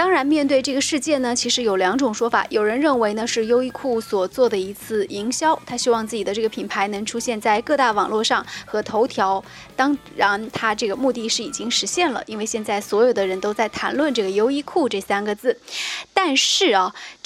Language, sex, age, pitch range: Chinese, female, 20-39, 220-275 Hz